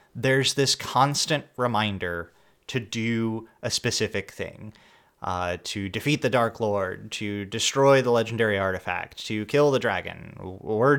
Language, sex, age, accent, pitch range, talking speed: English, male, 30-49, American, 105-135 Hz, 135 wpm